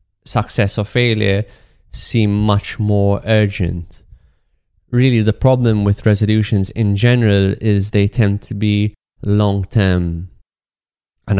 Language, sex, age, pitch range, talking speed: English, male, 20-39, 95-110 Hz, 115 wpm